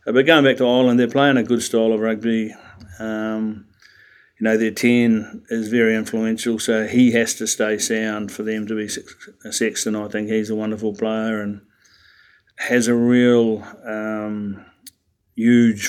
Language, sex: English, male